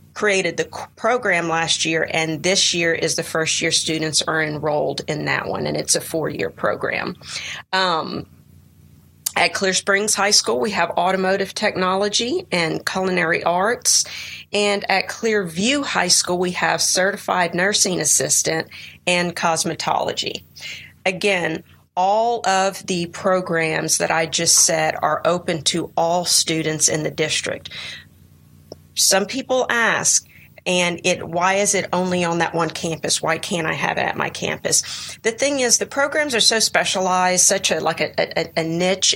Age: 40-59